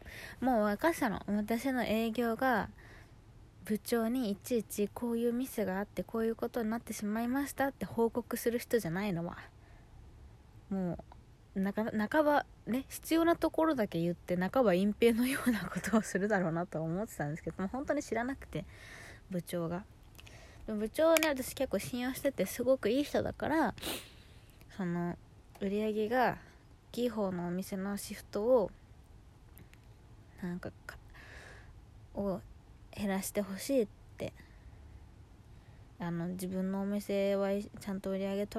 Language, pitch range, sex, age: Japanese, 170-235 Hz, female, 20-39